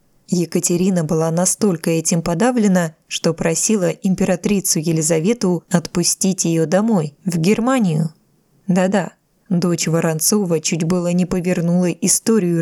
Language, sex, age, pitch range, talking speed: Russian, female, 20-39, 165-215 Hz, 105 wpm